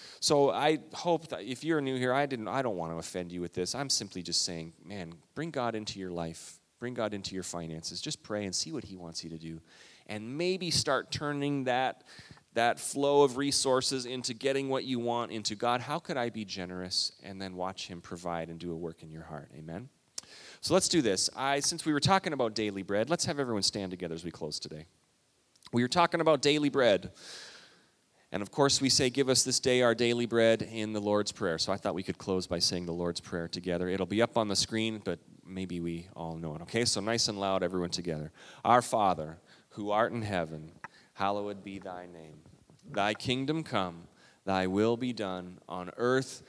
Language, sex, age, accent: English, male, 30-49, American